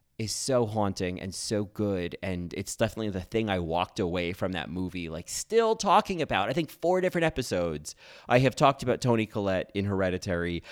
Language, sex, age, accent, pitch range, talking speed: English, male, 30-49, American, 85-120 Hz, 190 wpm